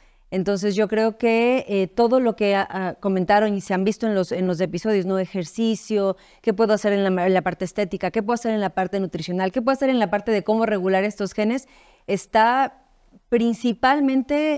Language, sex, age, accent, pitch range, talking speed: Spanish, female, 30-49, Mexican, 195-240 Hz, 210 wpm